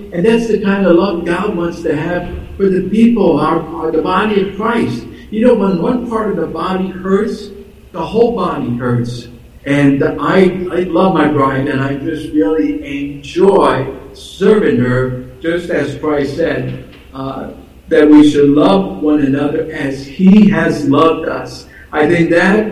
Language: English